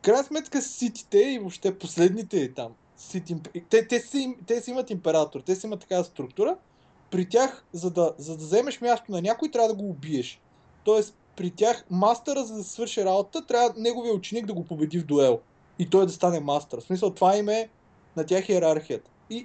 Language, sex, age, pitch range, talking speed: Bulgarian, male, 20-39, 175-245 Hz, 200 wpm